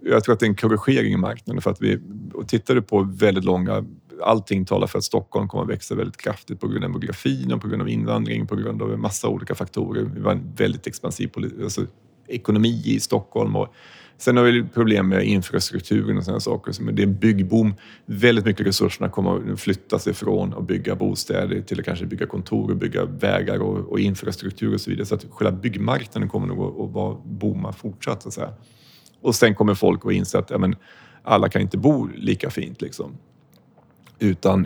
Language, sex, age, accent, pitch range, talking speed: Swedish, male, 30-49, native, 95-115 Hz, 215 wpm